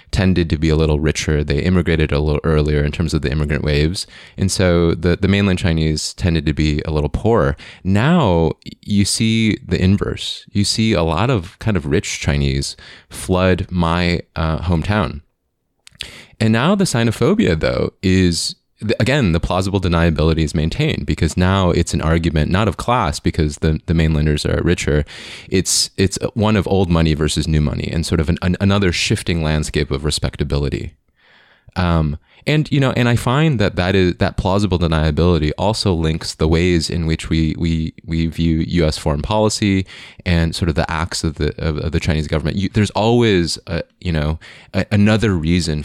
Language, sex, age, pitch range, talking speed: English, male, 20-39, 80-95 Hz, 180 wpm